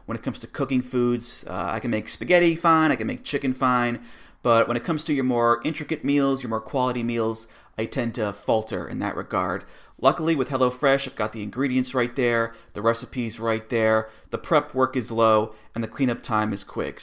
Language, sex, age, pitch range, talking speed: English, male, 30-49, 110-140 Hz, 215 wpm